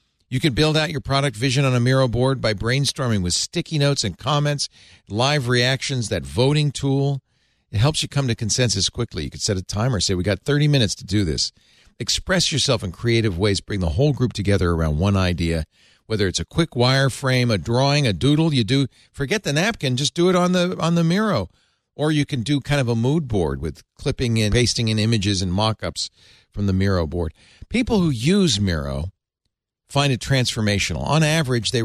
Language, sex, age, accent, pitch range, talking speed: English, male, 50-69, American, 105-140 Hz, 205 wpm